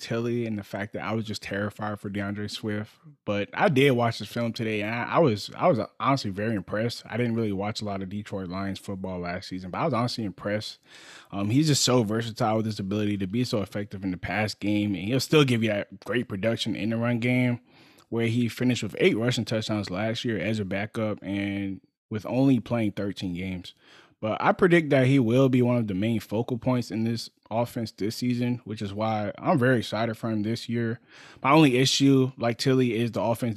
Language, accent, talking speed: English, American, 225 wpm